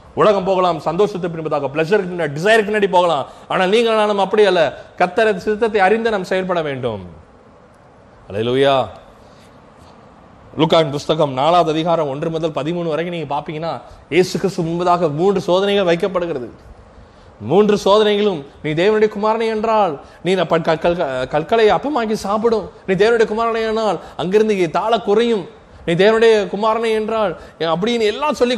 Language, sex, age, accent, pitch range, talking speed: Tamil, male, 20-39, native, 160-210 Hz, 55 wpm